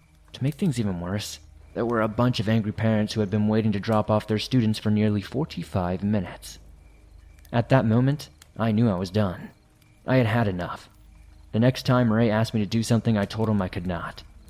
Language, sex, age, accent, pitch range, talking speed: English, male, 20-39, American, 95-115 Hz, 215 wpm